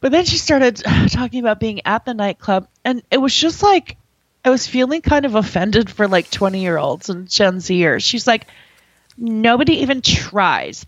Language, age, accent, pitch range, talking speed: English, 30-49, American, 190-245 Hz, 190 wpm